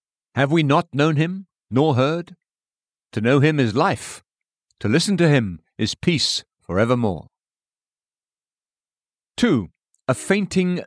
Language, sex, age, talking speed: English, male, 50-69, 120 wpm